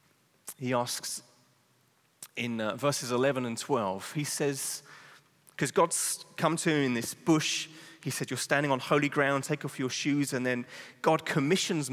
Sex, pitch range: male, 120-145 Hz